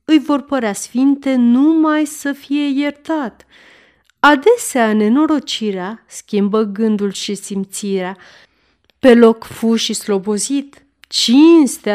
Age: 30-49